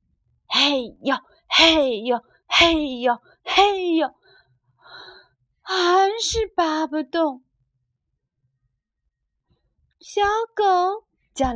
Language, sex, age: Chinese, female, 30-49